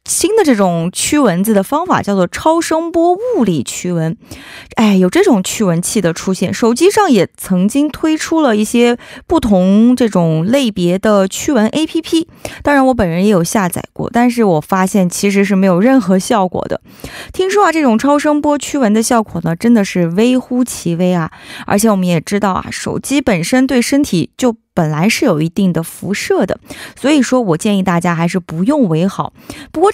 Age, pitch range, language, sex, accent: 20-39, 185-275 Hz, Korean, female, Chinese